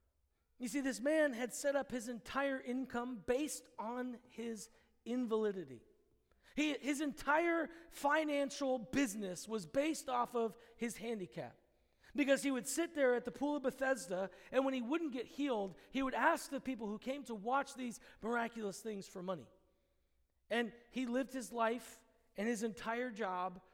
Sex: male